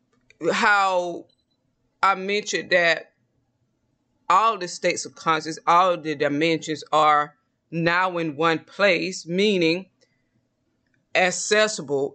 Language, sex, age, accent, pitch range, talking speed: English, female, 20-39, American, 150-185 Hz, 95 wpm